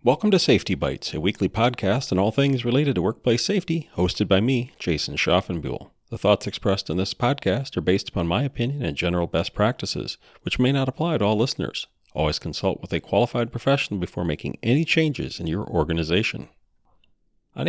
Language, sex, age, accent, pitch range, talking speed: English, male, 40-59, American, 95-135 Hz, 185 wpm